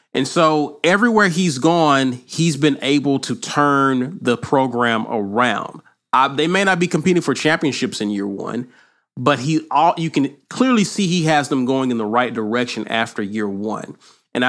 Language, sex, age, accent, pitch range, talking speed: English, male, 30-49, American, 120-165 Hz, 180 wpm